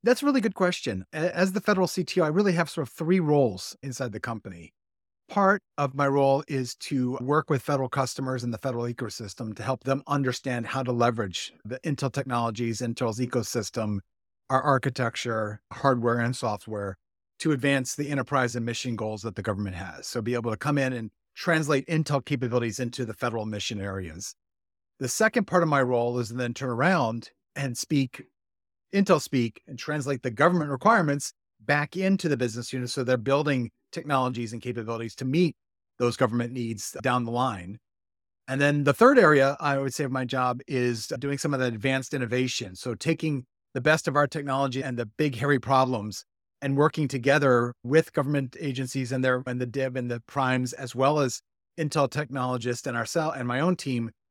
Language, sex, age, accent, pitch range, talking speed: English, male, 40-59, American, 120-145 Hz, 190 wpm